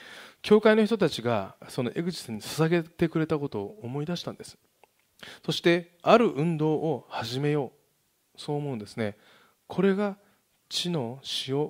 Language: Japanese